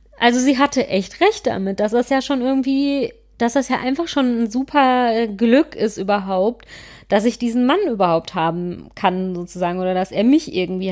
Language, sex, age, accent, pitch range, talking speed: German, female, 30-49, German, 195-255 Hz, 185 wpm